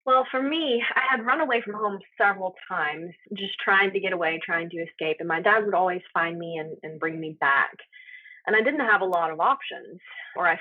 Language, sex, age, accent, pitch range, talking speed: English, female, 20-39, American, 180-255 Hz, 230 wpm